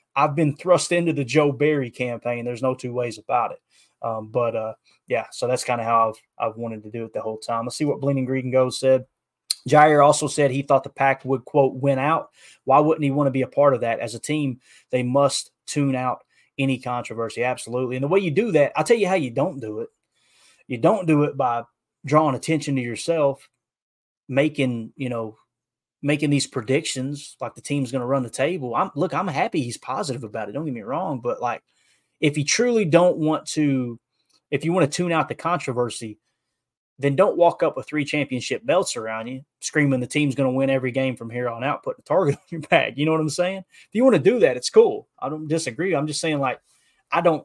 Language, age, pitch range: English, 20-39, 125-155 Hz